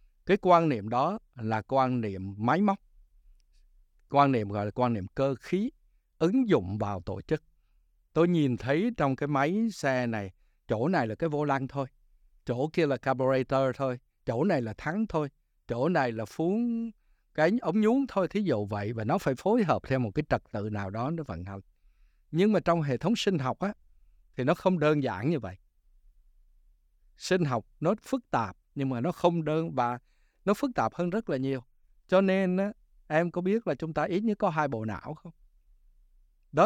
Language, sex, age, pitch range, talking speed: Vietnamese, male, 60-79, 110-160 Hz, 200 wpm